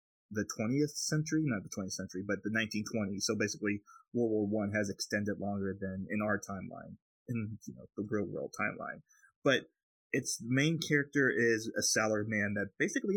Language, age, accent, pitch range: English, 30-49, American, 105-130 Hz